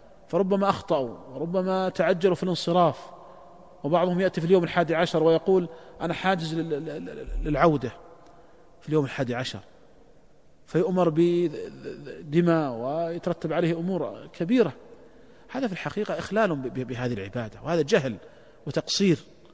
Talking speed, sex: 110 wpm, male